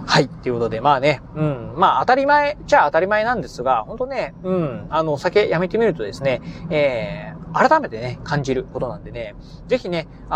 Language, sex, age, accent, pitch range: Japanese, male, 30-49, native, 140-220 Hz